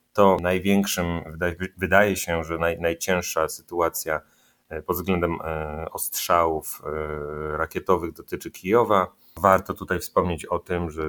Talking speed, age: 105 wpm, 30-49